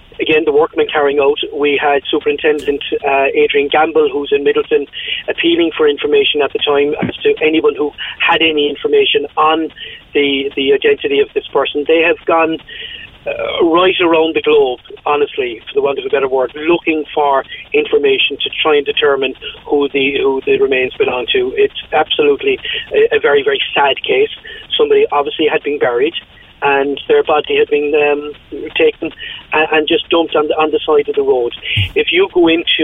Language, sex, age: English, male, 40-59